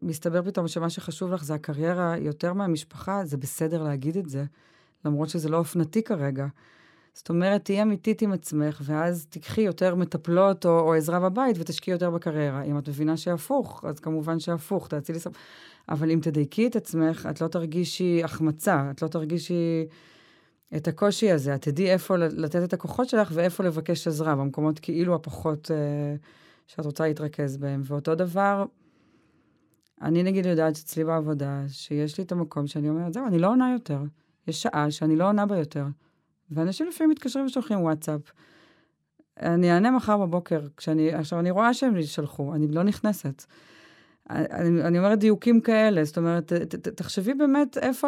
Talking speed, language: 155 wpm, Hebrew